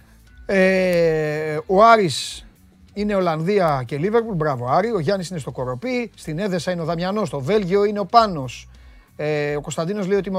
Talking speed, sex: 175 wpm, male